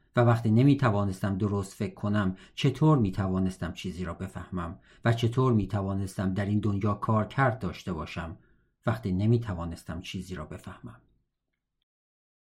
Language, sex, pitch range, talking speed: Persian, male, 100-120 Hz, 125 wpm